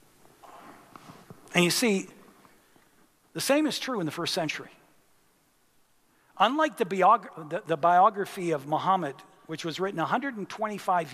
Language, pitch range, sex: English, 160-210 Hz, male